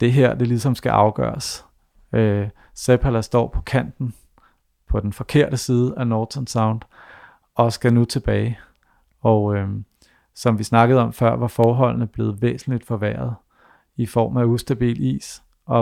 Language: Danish